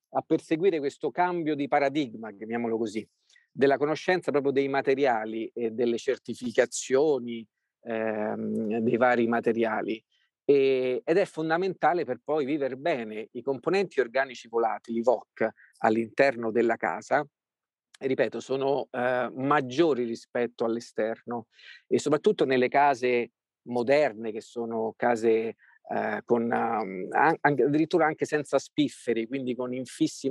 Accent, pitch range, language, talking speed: native, 115-140 Hz, Italian, 115 wpm